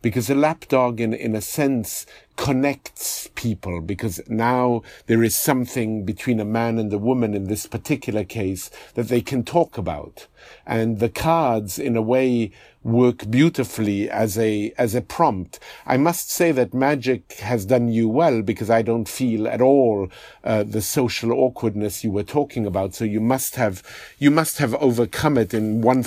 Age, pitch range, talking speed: 50-69, 110-130 Hz, 175 wpm